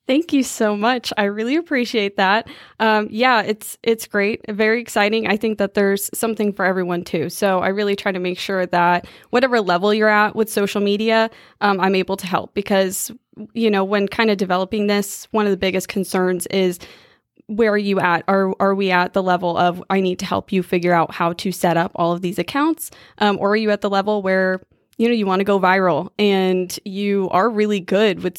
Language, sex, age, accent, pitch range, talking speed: English, female, 20-39, American, 185-210 Hz, 220 wpm